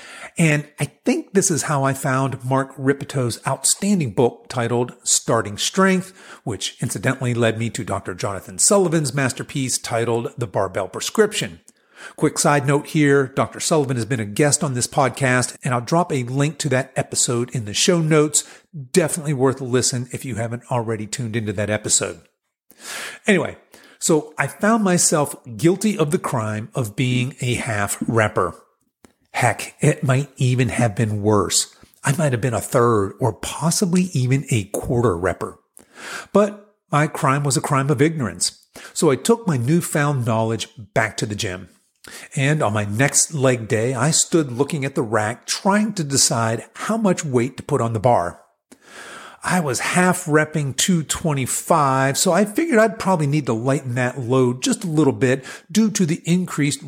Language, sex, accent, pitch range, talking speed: English, male, American, 120-160 Hz, 170 wpm